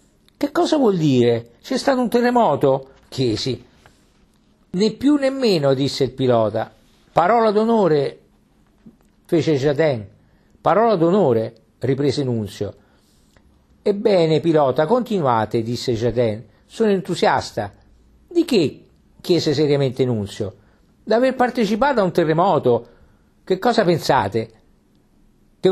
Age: 50-69